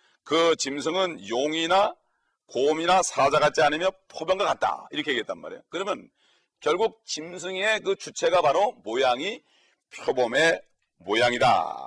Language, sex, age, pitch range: Korean, male, 40-59, 150-230 Hz